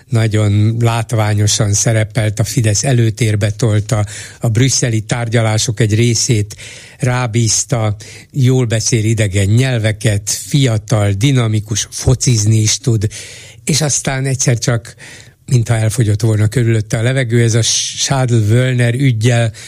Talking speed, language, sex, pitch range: 115 wpm, Hungarian, male, 110-125 Hz